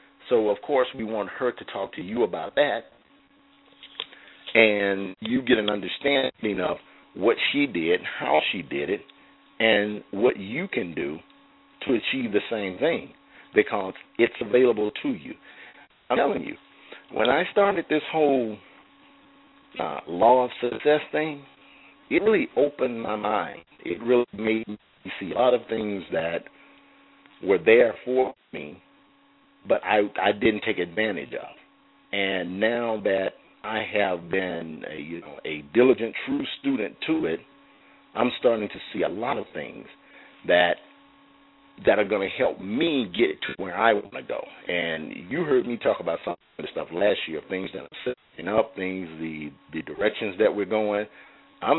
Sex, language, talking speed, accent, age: male, English, 160 wpm, American, 50-69